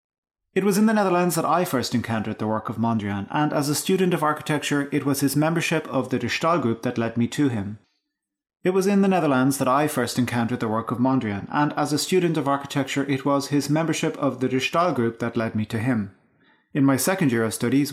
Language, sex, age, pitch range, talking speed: English, male, 30-49, 120-155 Hz, 240 wpm